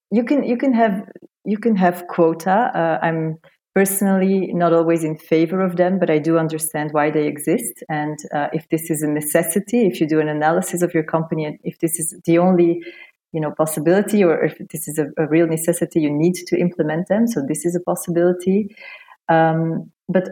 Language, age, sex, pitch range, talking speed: English, 30-49, female, 160-190 Hz, 205 wpm